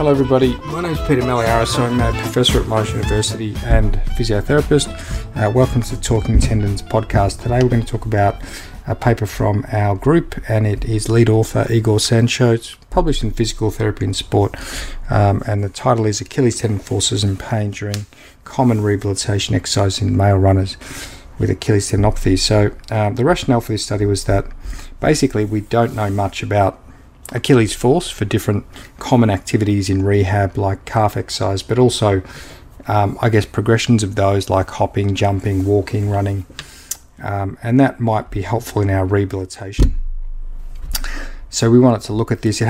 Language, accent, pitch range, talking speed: English, Australian, 100-120 Hz, 170 wpm